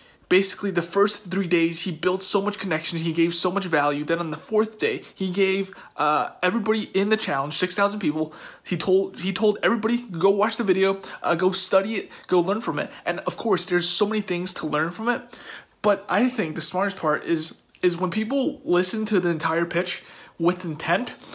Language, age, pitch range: English, 20-39, 170-205 Hz